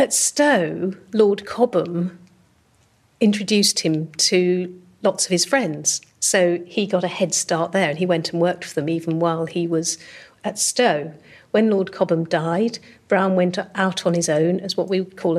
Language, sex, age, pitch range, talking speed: English, female, 50-69, 165-205 Hz, 180 wpm